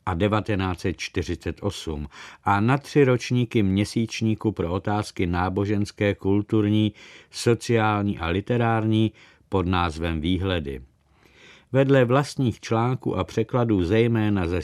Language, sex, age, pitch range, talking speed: Czech, male, 50-69, 95-115 Hz, 95 wpm